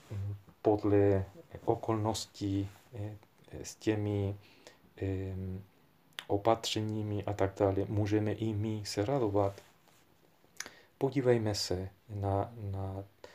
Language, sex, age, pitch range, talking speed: Czech, male, 40-59, 100-115 Hz, 75 wpm